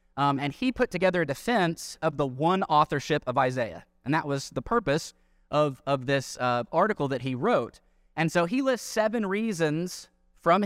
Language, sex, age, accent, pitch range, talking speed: English, male, 20-39, American, 135-170 Hz, 185 wpm